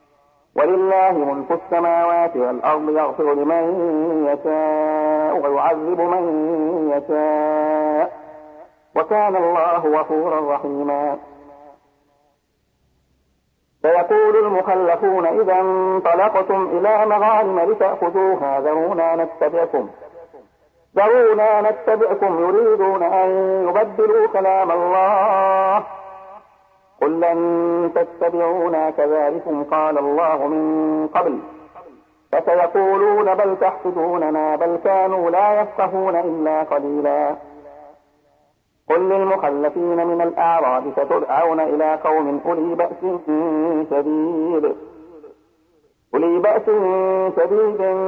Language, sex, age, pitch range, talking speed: Arabic, male, 50-69, 155-190 Hz, 75 wpm